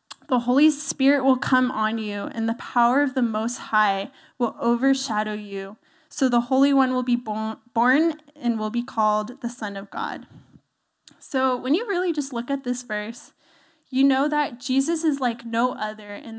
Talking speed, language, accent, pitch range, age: 185 wpm, English, American, 225-270 Hz, 10-29